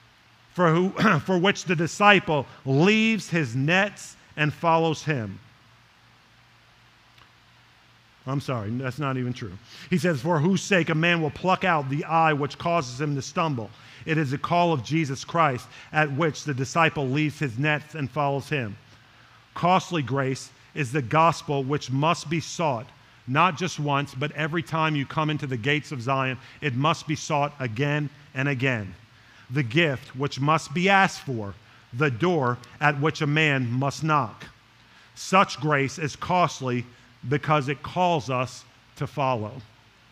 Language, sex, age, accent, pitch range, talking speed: English, male, 50-69, American, 130-165 Hz, 160 wpm